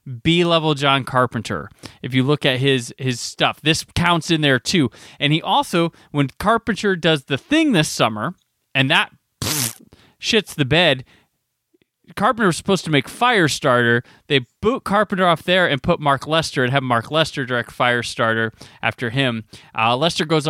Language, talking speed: English, 165 wpm